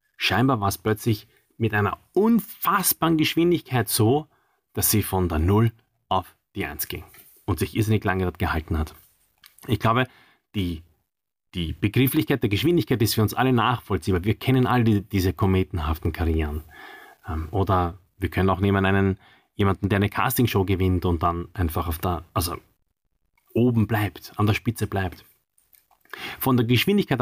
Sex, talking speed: male, 150 wpm